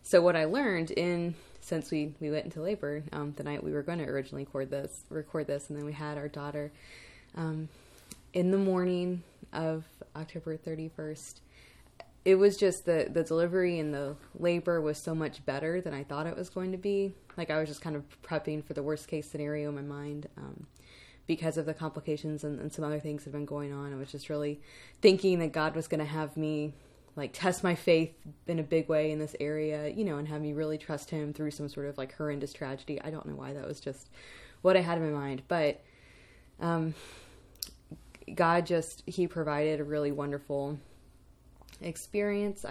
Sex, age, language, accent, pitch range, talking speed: female, 20-39, English, American, 150-170 Hz, 205 wpm